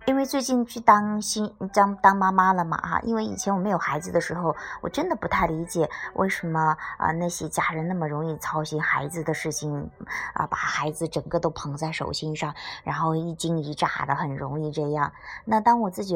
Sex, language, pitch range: male, Chinese, 160-205 Hz